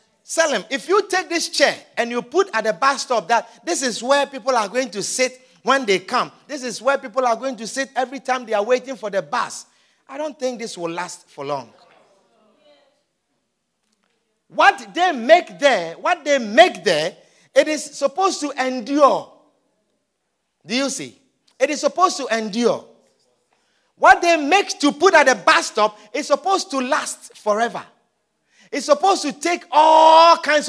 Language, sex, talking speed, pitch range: English, male, 175 wpm, 255-355 Hz